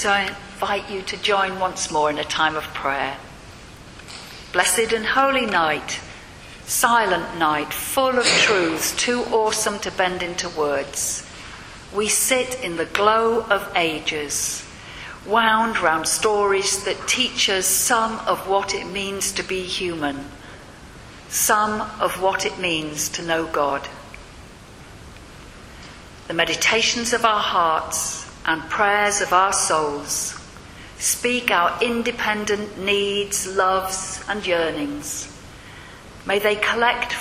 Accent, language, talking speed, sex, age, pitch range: British, English, 125 wpm, female, 50-69, 170-215 Hz